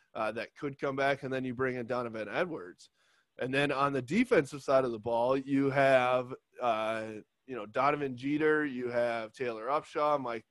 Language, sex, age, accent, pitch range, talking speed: English, male, 20-39, American, 125-145 Hz, 190 wpm